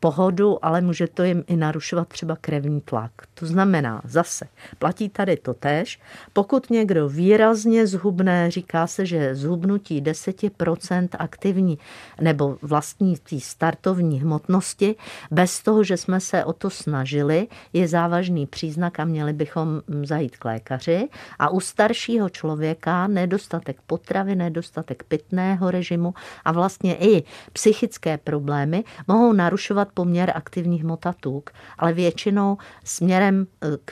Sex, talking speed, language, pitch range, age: female, 125 wpm, Czech, 145-185 Hz, 50-69